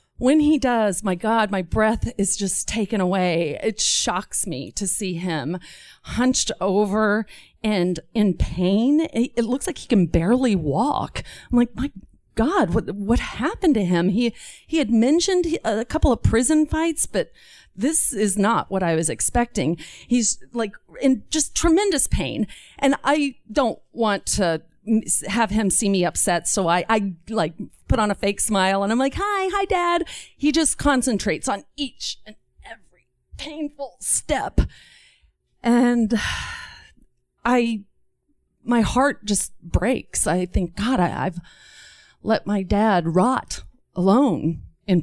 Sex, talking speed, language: female, 150 wpm, English